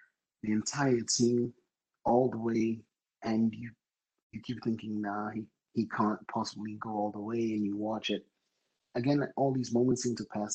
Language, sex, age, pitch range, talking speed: English, male, 30-49, 105-115 Hz, 175 wpm